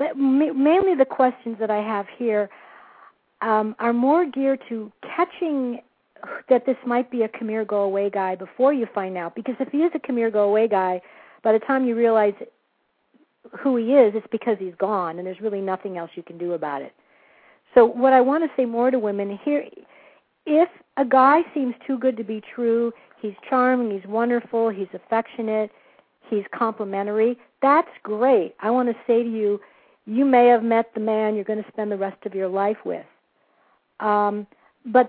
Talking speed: 185 wpm